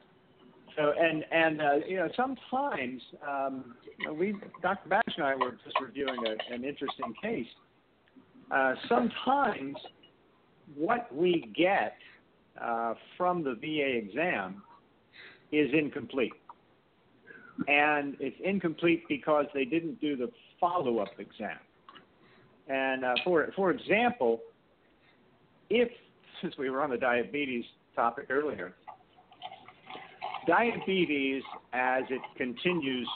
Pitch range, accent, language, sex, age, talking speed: 120-175 Hz, American, English, male, 50-69, 110 wpm